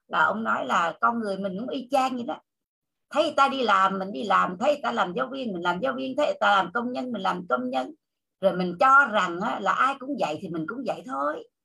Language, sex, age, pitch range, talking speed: Vietnamese, female, 60-79, 185-275 Hz, 275 wpm